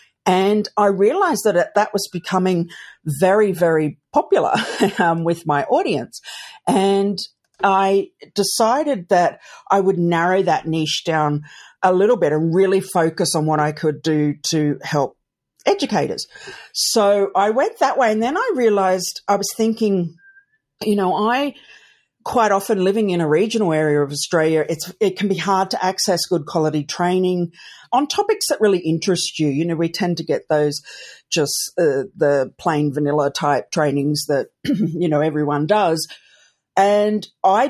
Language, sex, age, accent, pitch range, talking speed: English, female, 50-69, Australian, 150-200 Hz, 155 wpm